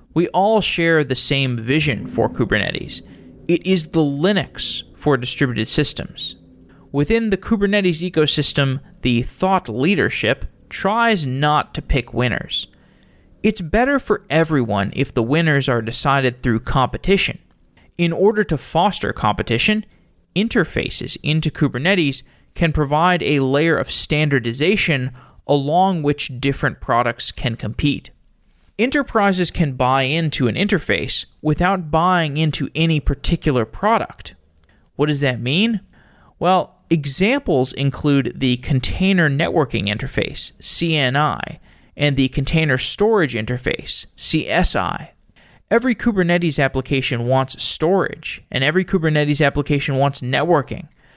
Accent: American